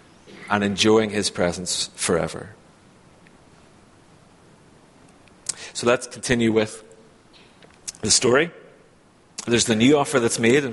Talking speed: 100 wpm